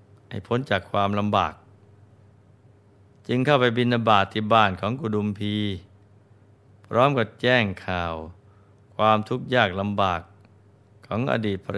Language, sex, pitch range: Thai, male, 100-115 Hz